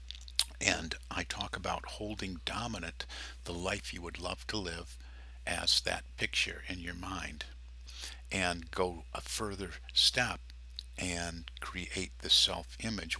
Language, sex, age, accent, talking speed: English, male, 50-69, American, 125 wpm